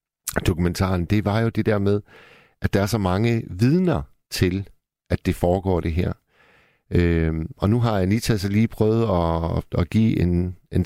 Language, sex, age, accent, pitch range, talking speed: Danish, male, 60-79, native, 85-105 Hz, 175 wpm